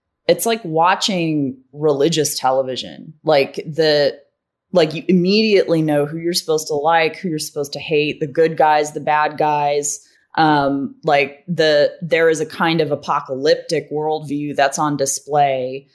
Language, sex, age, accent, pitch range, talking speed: English, female, 20-39, American, 140-170 Hz, 150 wpm